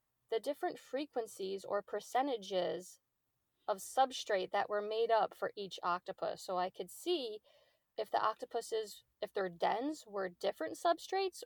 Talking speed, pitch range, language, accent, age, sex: 140 wpm, 200-255 Hz, English, American, 20-39, female